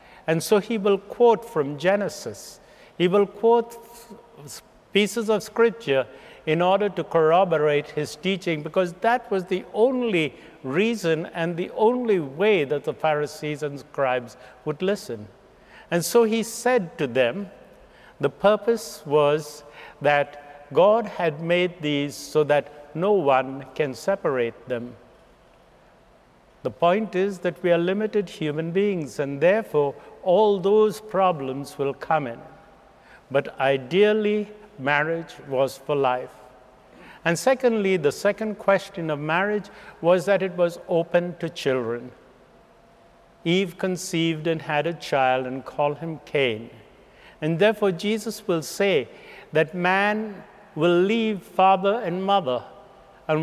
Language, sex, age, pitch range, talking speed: English, male, 60-79, 145-200 Hz, 130 wpm